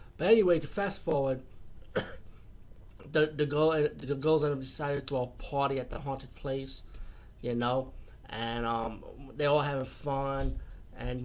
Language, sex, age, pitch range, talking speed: English, male, 30-49, 120-145 Hz, 155 wpm